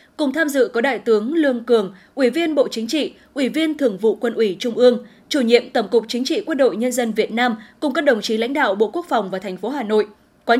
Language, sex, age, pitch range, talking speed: Vietnamese, female, 20-39, 225-280 Hz, 270 wpm